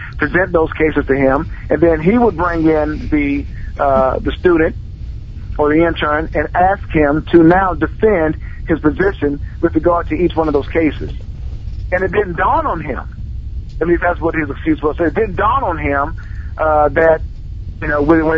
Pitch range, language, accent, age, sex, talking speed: 150-180 Hz, English, American, 50-69, male, 195 wpm